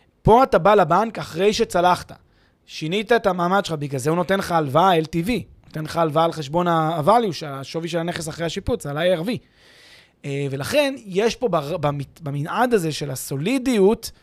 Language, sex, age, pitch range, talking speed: Hebrew, male, 20-39, 170-215 Hz, 175 wpm